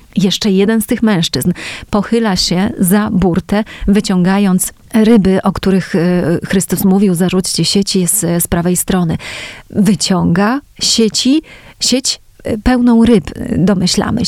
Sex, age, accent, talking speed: female, 30-49, native, 115 wpm